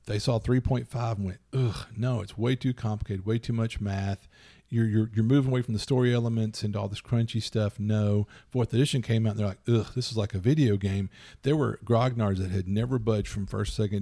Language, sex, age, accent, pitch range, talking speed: English, male, 40-59, American, 105-135 Hz, 230 wpm